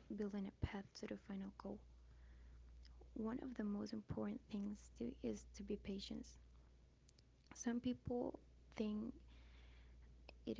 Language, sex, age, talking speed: English, female, 20-39, 120 wpm